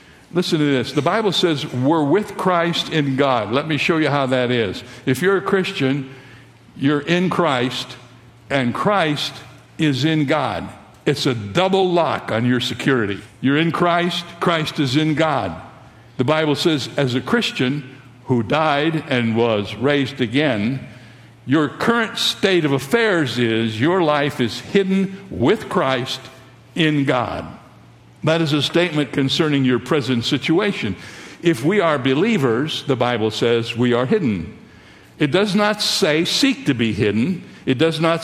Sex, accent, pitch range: male, American, 125-170 Hz